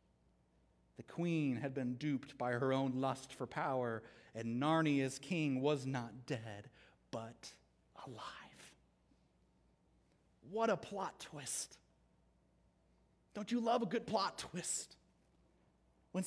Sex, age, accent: male, 30-49, American